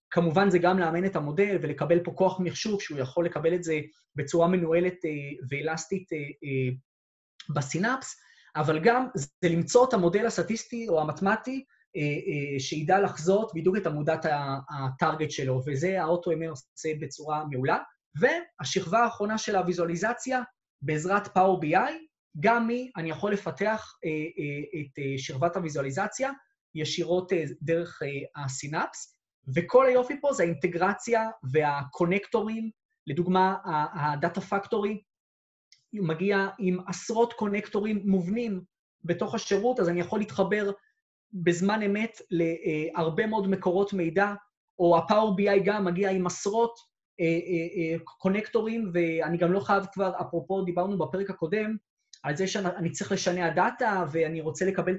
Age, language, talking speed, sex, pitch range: 20-39, Hebrew, 130 wpm, male, 160-210 Hz